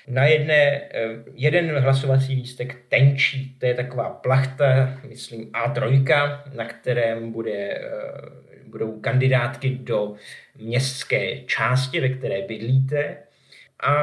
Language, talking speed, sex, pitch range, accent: Czech, 105 wpm, male, 120-140 Hz, native